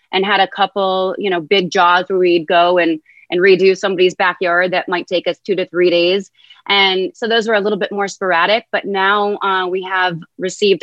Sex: female